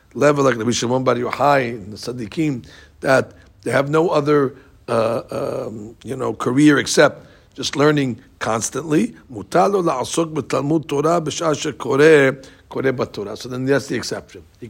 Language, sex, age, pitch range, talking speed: English, male, 60-79, 120-160 Hz, 165 wpm